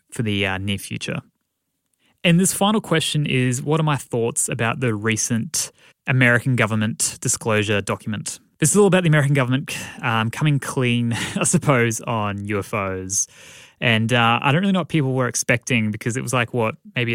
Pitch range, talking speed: 105-130 Hz, 180 wpm